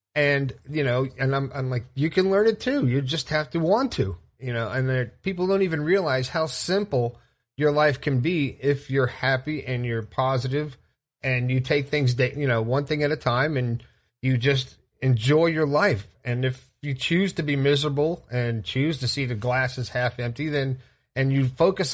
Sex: male